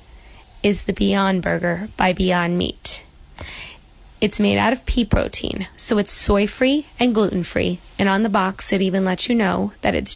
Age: 20-39